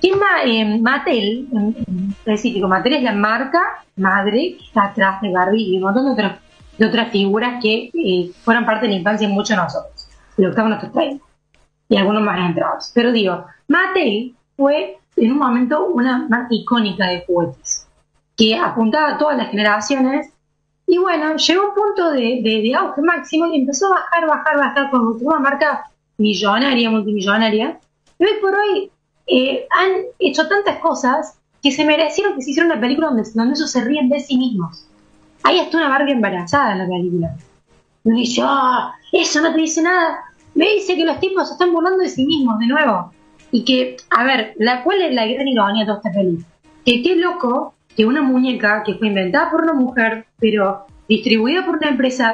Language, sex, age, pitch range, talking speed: Spanish, female, 20-39, 210-310 Hz, 195 wpm